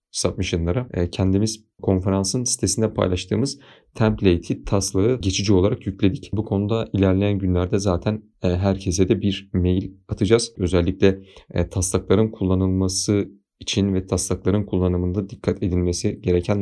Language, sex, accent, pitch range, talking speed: Turkish, male, native, 95-105 Hz, 110 wpm